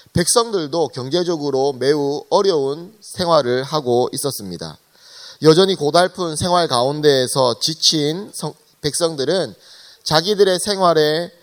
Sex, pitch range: male, 135-190 Hz